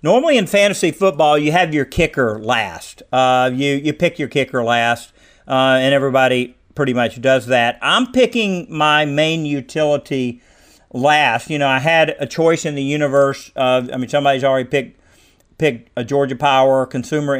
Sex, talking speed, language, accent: male, 170 wpm, English, American